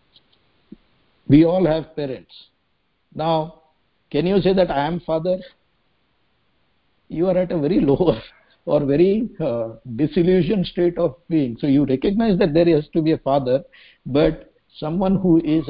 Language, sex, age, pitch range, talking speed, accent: English, male, 60-79, 130-170 Hz, 150 wpm, Indian